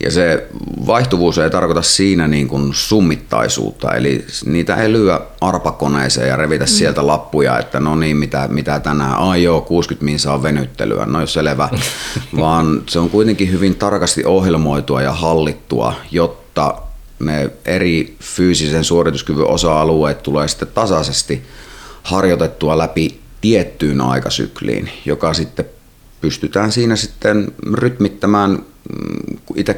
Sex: male